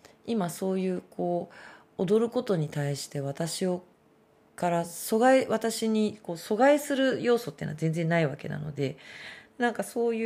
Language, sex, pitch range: Japanese, female, 145-205 Hz